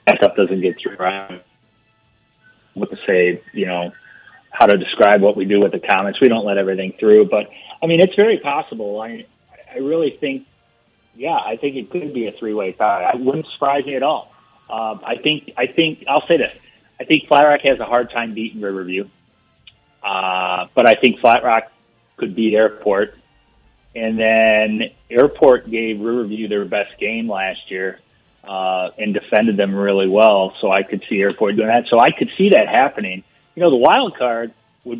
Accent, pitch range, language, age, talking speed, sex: American, 100-140 Hz, English, 30-49, 190 wpm, male